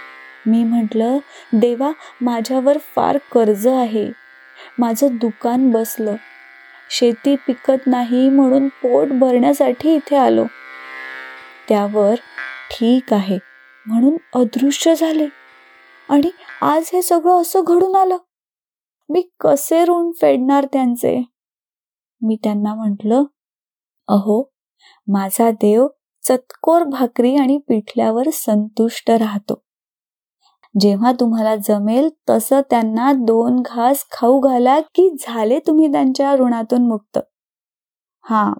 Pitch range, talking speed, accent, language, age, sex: 220-275 Hz, 100 wpm, native, Marathi, 20-39, female